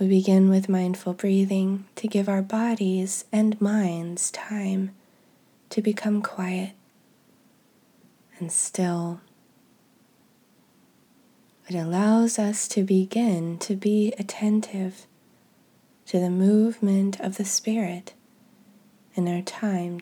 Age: 20-39